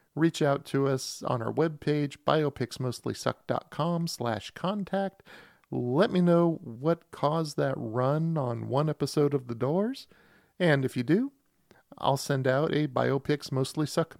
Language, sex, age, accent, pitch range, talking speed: English, male, 40-59, American, 120-160 Hz, 140 wpm